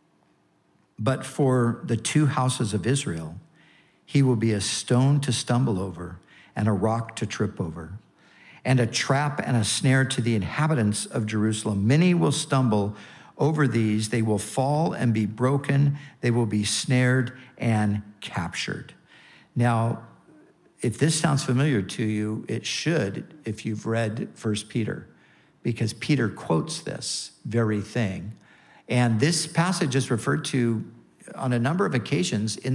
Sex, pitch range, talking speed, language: male, 110-135 Hz, 150 wpm, English